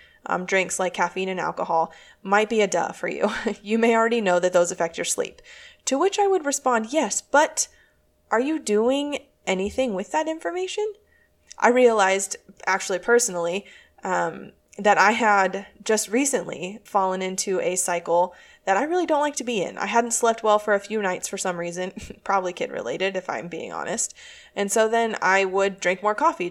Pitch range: 185-235 Hz